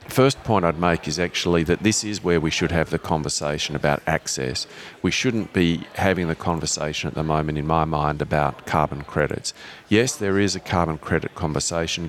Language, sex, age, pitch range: English, male, 40-59, 80-95 Hz